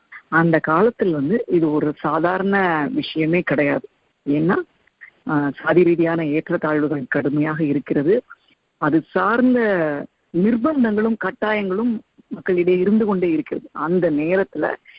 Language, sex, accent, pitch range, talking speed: Tamil, female, native, 155-215 Hz, 100 wpm